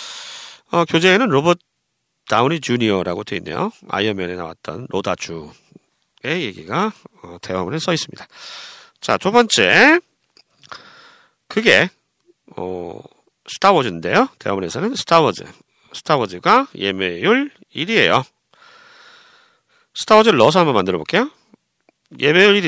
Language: Korean